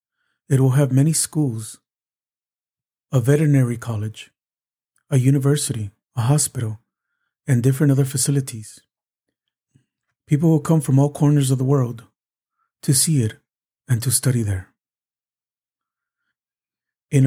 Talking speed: 115 wpm